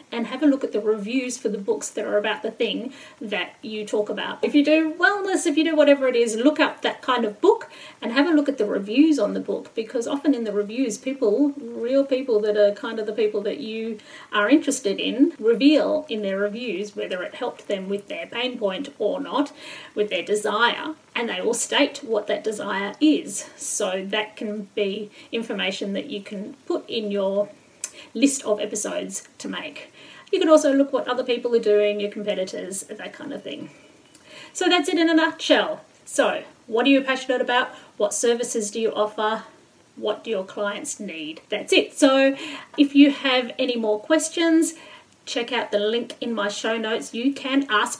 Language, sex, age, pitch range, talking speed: English, female, 40-59, 215-290 Hz, 205 wpm